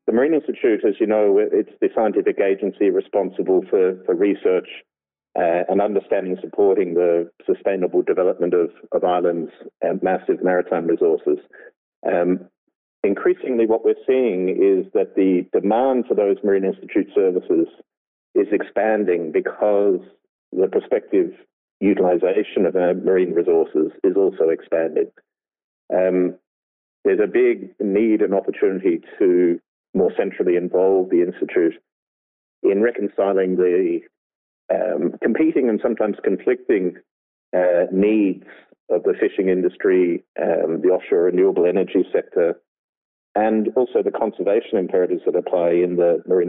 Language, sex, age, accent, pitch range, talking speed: English, male, 40-59, British, 360-430 Hz, 125 wpm